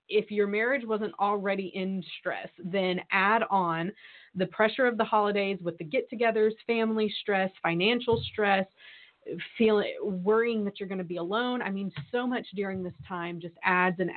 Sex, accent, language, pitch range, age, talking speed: female, American, English, 180-215 Hz, 20-39, 170 wpm